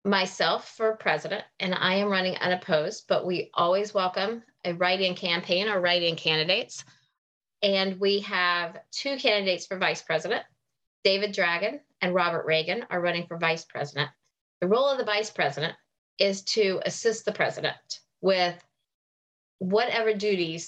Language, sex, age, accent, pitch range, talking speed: English, female, 30-49, American, 170-205 Hz, 145 wpm